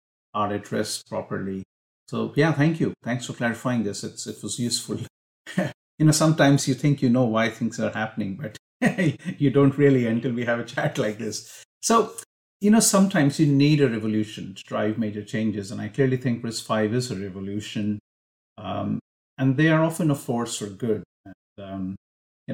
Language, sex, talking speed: English, male, 185 wpm